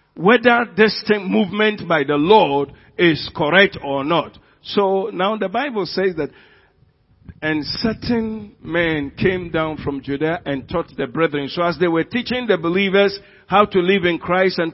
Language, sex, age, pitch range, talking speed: English, male, 50-69, 165-210 Hz, 165 wpm